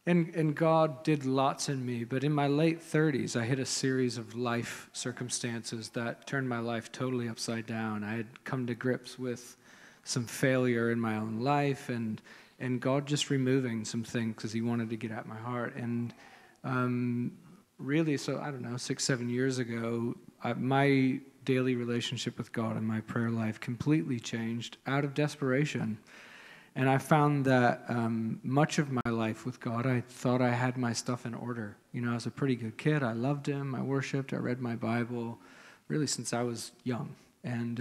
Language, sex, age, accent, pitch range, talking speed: English, male, 40-59, American, 115-135 Hz, 190 wpm